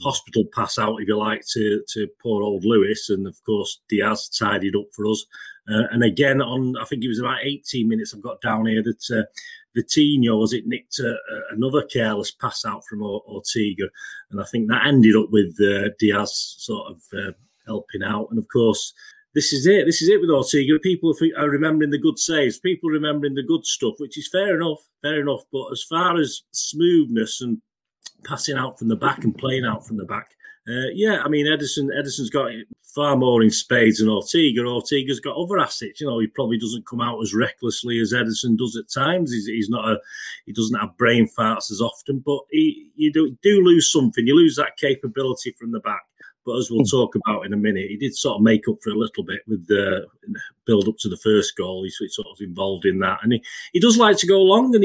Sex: male